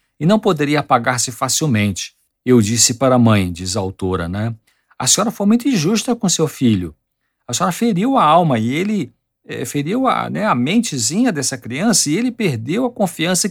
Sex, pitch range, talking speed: male, 115-180 Hz, 180 wpm